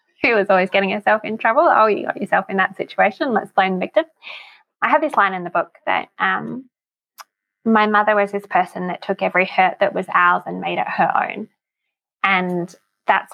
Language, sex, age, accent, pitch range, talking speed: English, female, 10-29, Australian, 180-255 Hz, 205 wpm